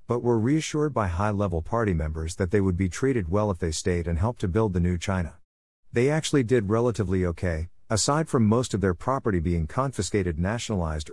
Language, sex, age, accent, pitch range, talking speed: English, male, 50-69, American, 90-115 Hz, 200 wpm